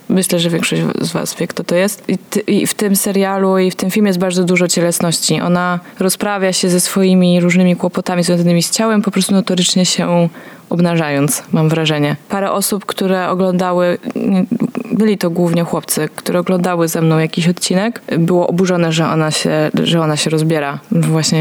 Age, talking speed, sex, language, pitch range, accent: 20-39, 175 wpm, female, Polish, 170-195 Hz, native